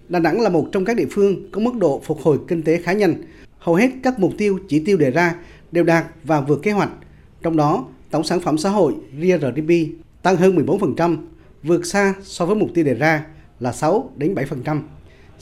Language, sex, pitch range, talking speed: Vietnamese, male, 155-200 Hz, 215 wpm